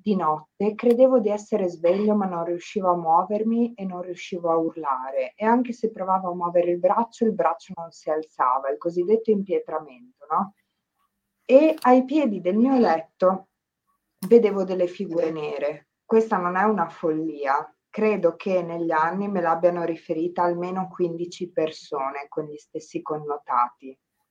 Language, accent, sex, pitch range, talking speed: Italian, native, female, 165-215 Hz, 155 wpm